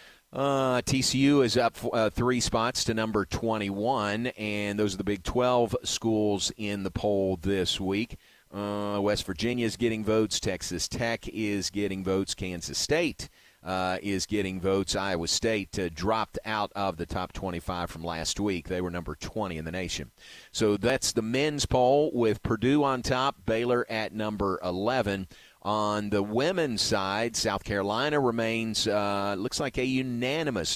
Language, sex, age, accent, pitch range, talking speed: English, male, 40-59, American, 95-115 Hz, 165 wpm